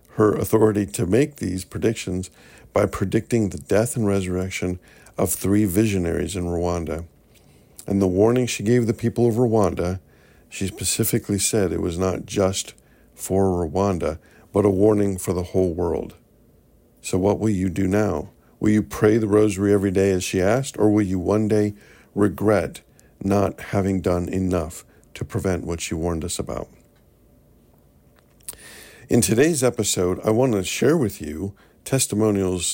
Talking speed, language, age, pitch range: 155 wpm, English, 50-69, 90-105 Hz